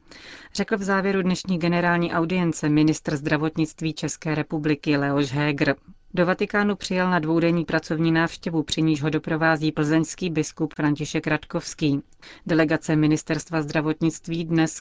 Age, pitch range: 30-49, 150-170 Hz